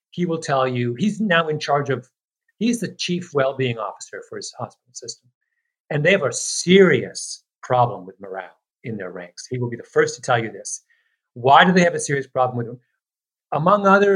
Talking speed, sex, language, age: 210 wpm, male, English, 50-69